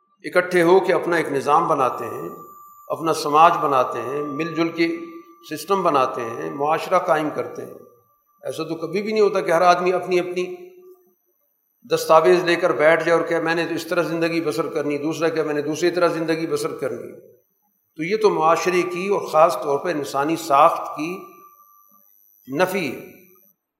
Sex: male